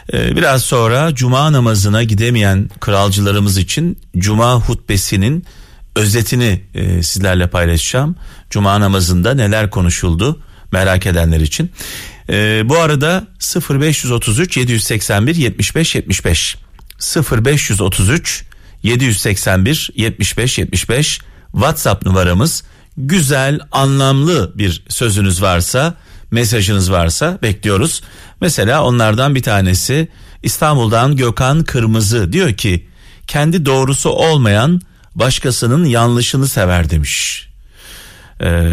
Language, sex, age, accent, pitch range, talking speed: Turkish, male, 40-59, native, 95-140 Hz, 90 wpm